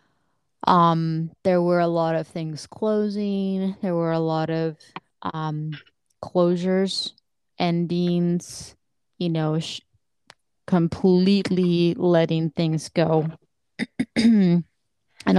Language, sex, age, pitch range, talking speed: English, female, 20-39, 165-190 Hz, 95 wpm